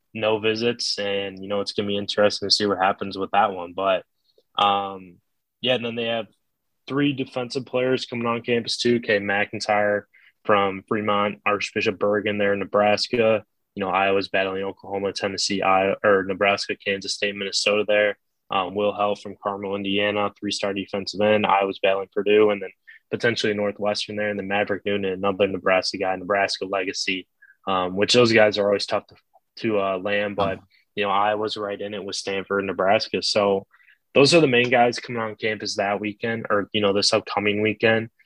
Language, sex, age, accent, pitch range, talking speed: English, male, 20-39, American, 100-110 Hz, 185 wpm